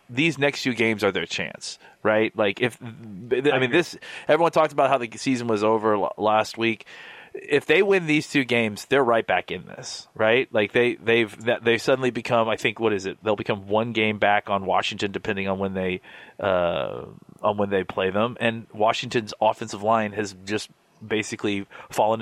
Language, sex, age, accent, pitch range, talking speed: English, male, 30-49, American, 105-125 Hz, 190 wpm